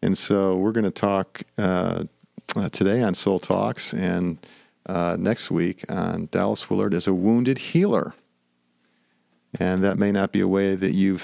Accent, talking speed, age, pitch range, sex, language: American, 165 wpm, 40-59, 90-115 Hz, male, English